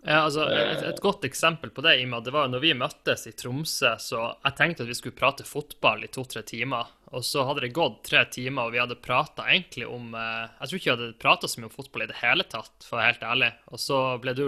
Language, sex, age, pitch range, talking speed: English, male, 20-39, 115-140 Hz, 235 wpm